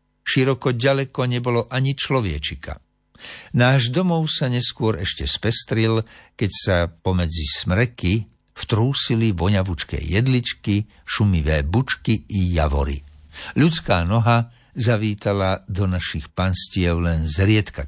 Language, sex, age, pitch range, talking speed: Slovak, male, 60-79, 85-120 Hz, 100 wpm